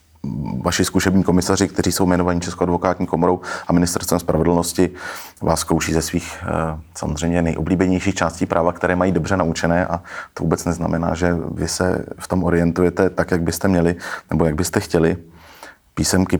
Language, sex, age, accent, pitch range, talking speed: Czech, male, 30-49, native, 85-95 Hz, 155 wpm